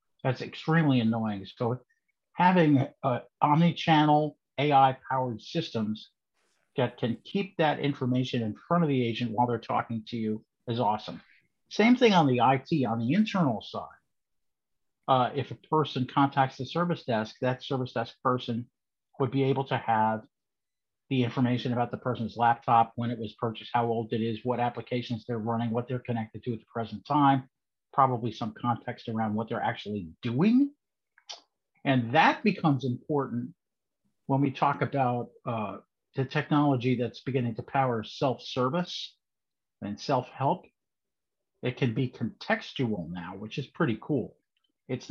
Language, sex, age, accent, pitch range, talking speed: English, male, 50-69, American, 115-140 Hz, 150 wpm